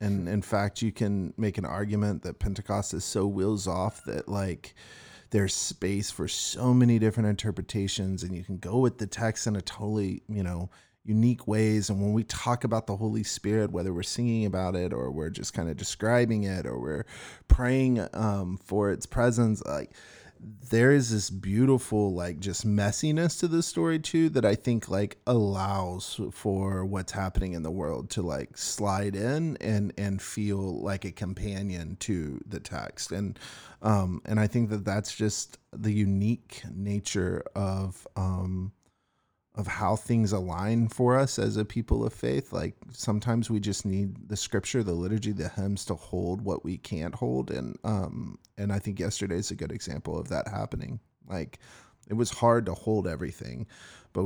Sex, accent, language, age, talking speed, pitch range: male, American, English, 30-49, 180 wpm, 95-110 Hz